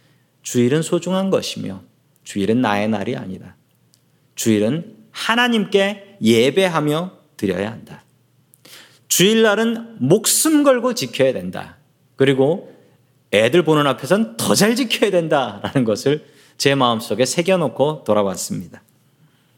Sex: male